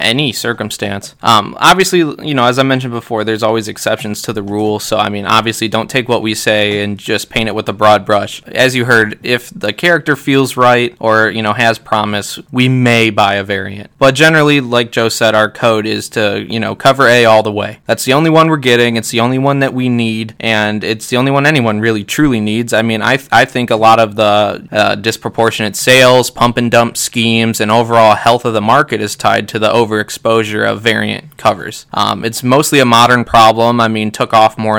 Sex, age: male, 20-39